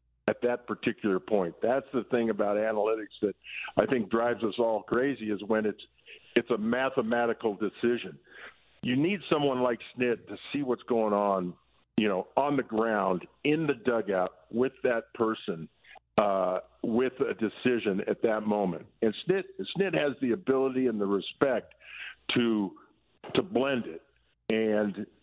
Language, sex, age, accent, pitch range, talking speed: English, male, 50-69, American, 110-140 Hz, 155 wpm